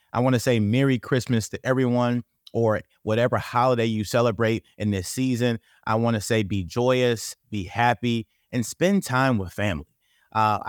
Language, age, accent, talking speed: English, 30-49, American, 155 wpm